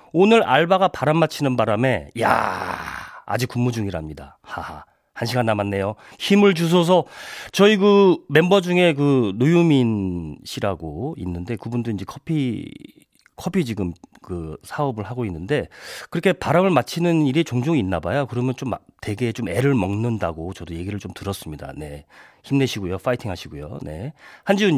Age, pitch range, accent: 40-59, 100-165 Hz, native